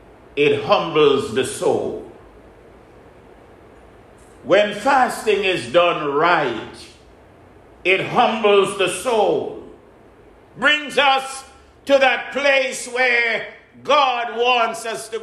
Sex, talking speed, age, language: male, 90 wpm, 50-69, English